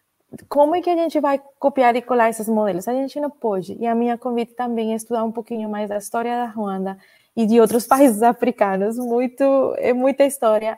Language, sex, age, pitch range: Portuguese, female, 20-39, 205-240 Hz